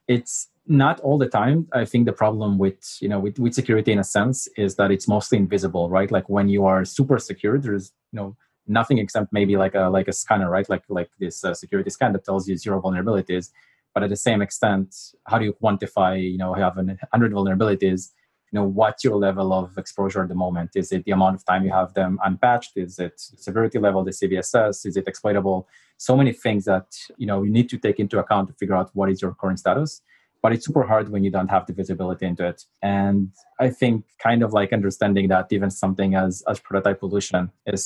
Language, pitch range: English, 95-110 Hz